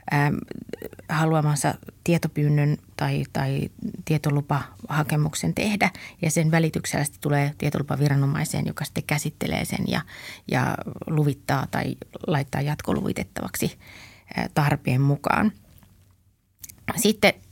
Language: Finnish